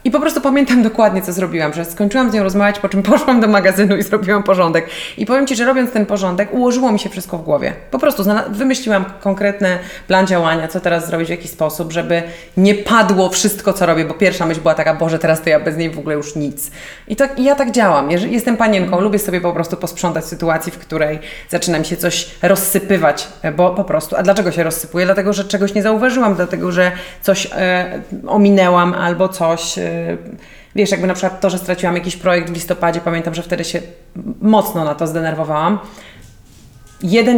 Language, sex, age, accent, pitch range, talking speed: Polish, female, 30-49, native, 165-205 Hz, 205 wpm